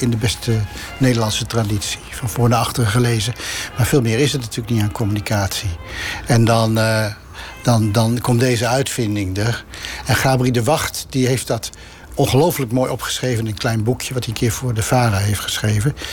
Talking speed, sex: 190 wpm, male